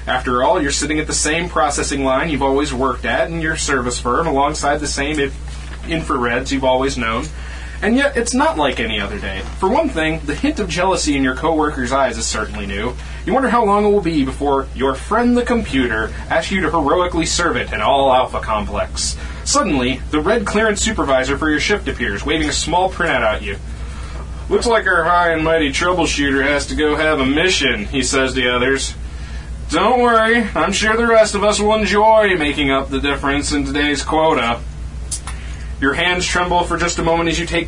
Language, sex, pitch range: English, male, 120-170 Hz